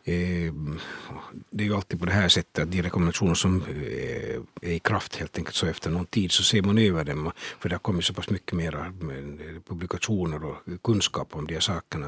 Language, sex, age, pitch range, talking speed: Swedish, male, 60-79, 85-100 Hz, 205 wpm